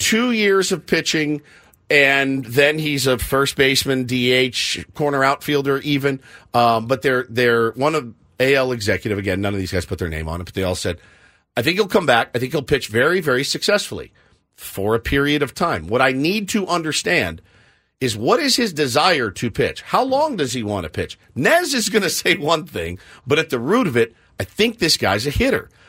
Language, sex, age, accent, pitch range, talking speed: English, male, 50-69, American, 110-150 Hz, 210 wpm